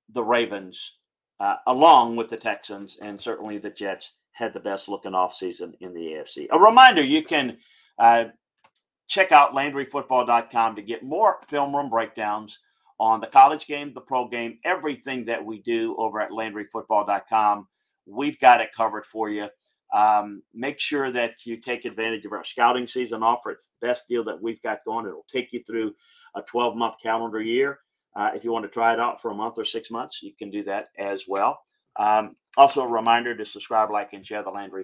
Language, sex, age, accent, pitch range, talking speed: English, male, 40-59, American, 105-135 Hz, 195 wpm